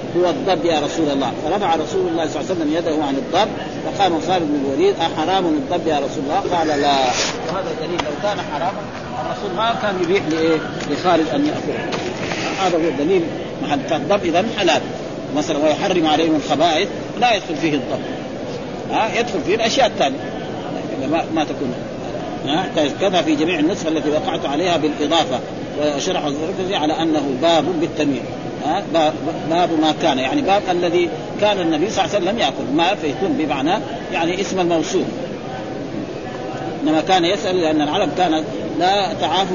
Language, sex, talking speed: Arabic, male, 160 wpm